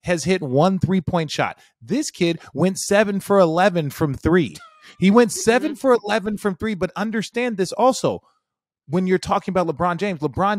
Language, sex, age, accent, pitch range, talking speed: English, male, 30-49, American, 140-195 Hz, 175 wpm